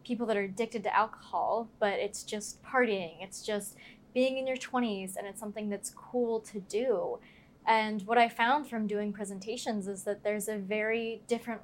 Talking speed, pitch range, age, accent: 185 wpm, 205-245 Hz, 20-39, American